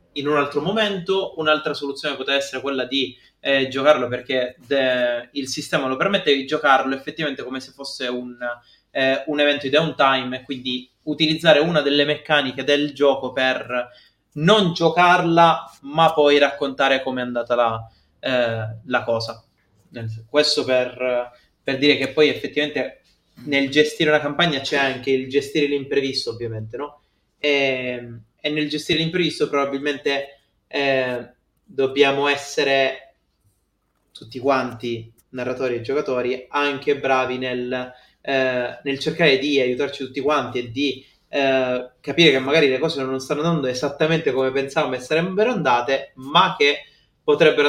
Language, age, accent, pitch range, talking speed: Italian, 20-39, native, 125-150 Hz, 140 wpm